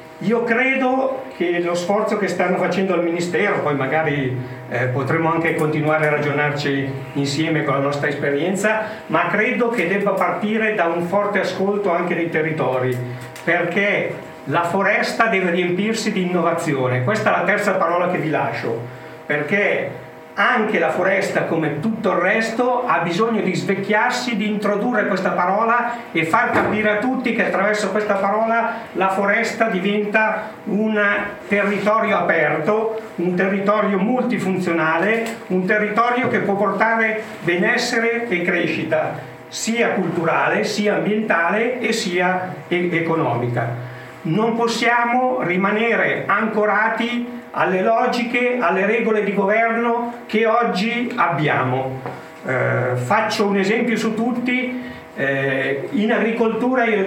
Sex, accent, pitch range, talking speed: male, native, 165-220 Hz, 130 wpm